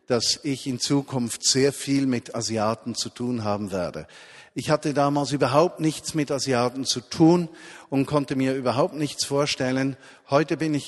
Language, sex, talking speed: German, male, 165 wpm